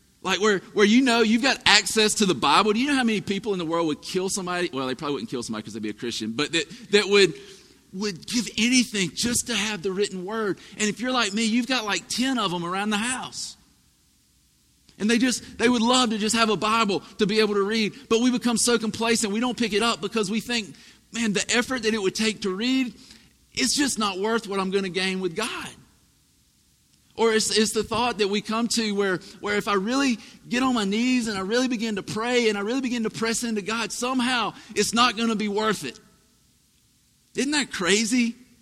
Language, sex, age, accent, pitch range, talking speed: English, male, 40-59, American, 195-235 Hz, 240 wpm